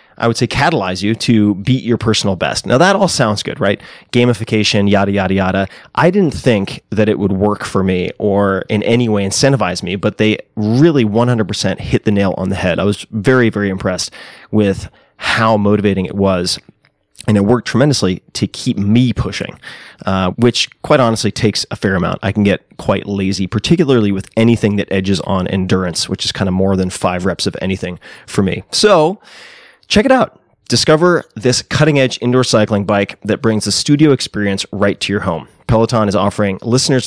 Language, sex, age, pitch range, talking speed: English, male, 30-49, 100-125 Hz, 195 wpm